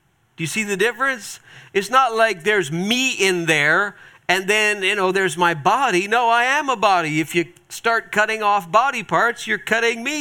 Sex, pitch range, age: male, 145-205 Hz, 50-69